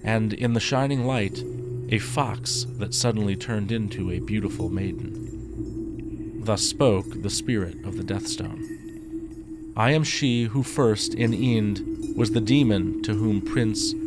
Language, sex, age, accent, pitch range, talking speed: English, male, 40-59, American, 100-135 Hz, 145 wpm